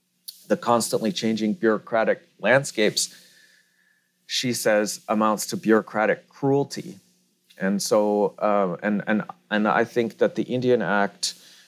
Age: 40-59